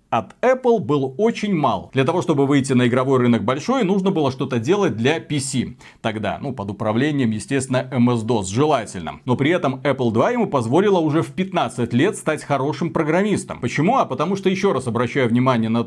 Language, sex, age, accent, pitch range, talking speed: Russian, male, 40-59, native, 130-190 Hz, 185 wpm